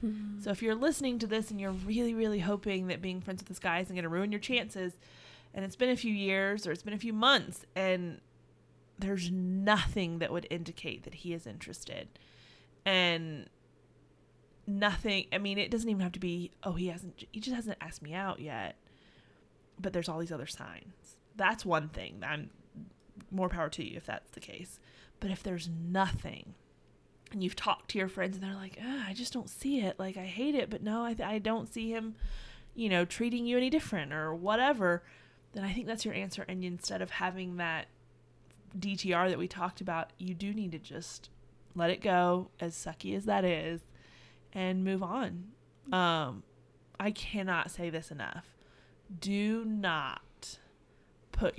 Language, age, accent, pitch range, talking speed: English, 20-39, American, 170-210 Hz, 190 wpm